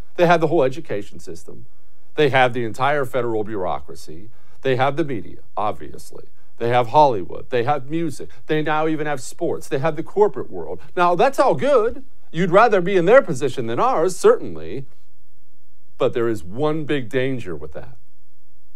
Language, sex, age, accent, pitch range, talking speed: English, male, 50-69, American, 105-165 Hz, 175 wpm